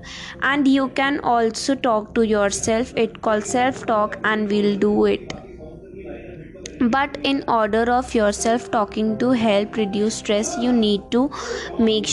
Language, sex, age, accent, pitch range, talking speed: Hindi, female, 20-39, native, 210-245 Hz, 145 wpm